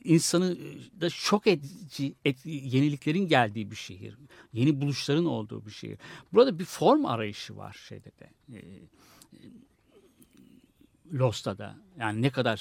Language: Turkish